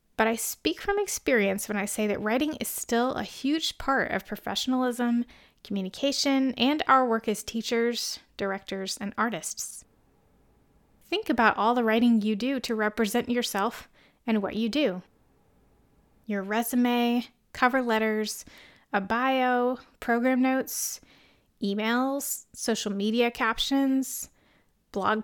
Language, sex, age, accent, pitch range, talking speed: English, female, 20-39, American, 205-255 Hz, 125 wpm